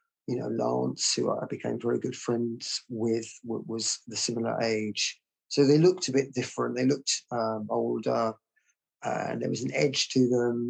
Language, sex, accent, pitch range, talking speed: English, male, British, 115-130 Hz, 175 wpm